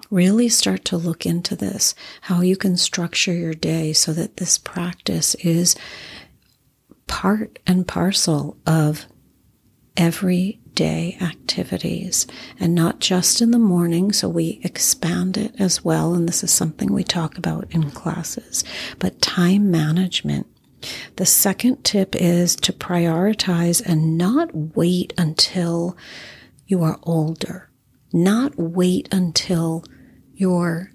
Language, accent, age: English, American, 40-59